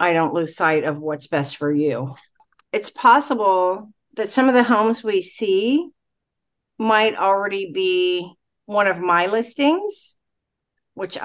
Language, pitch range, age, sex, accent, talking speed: English, 160-200 Hz, 50-69, female, American, 140 wpm